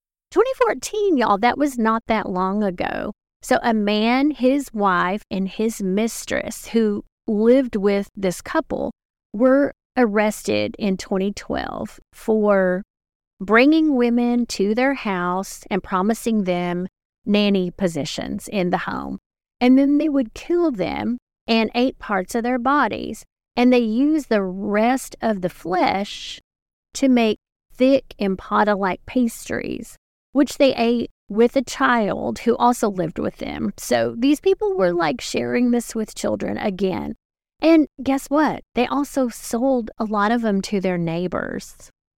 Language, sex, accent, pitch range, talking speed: English, female, American, 190-250 Hz, 140 wpm